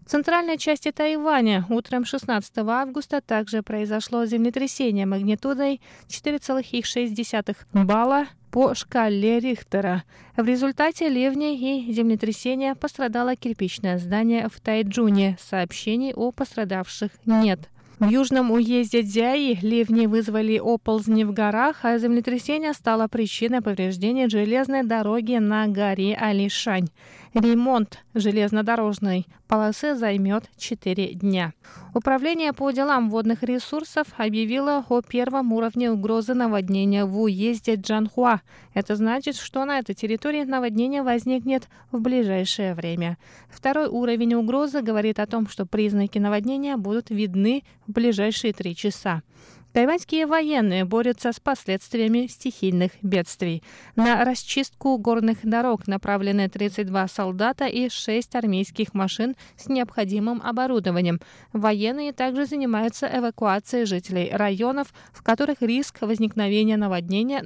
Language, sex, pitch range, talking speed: Russian, female, 210-255 Hz, 115 wpm